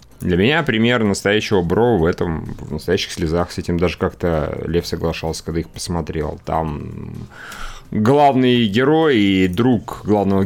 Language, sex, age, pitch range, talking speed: Russian, male, 30-49, 85-110 Hz, 140 wpm